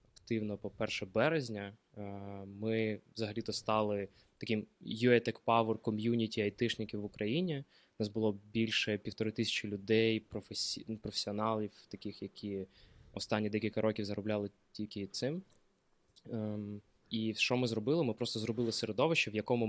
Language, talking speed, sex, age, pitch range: Ukrainian, 120 wpm, male, 20-39, 105-115 Hz